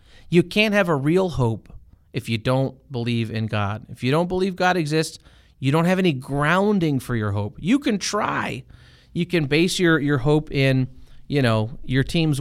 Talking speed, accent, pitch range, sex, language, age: 195 wpm, American, 115-175 Hz, male, English, 30-49